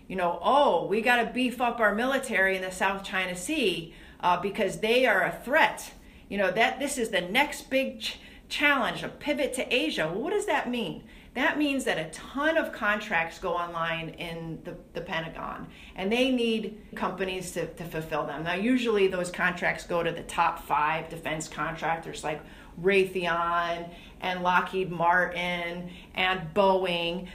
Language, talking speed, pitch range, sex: English, 175 wpm, 180-250 Hz, female